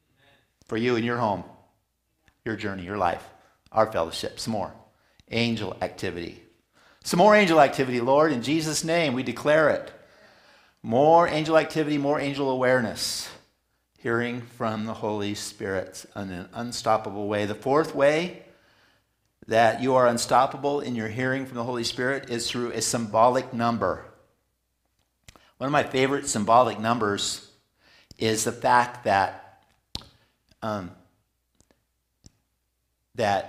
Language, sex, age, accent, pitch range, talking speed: English, male, 50-69, American, 105-135 Hz, 130 wpm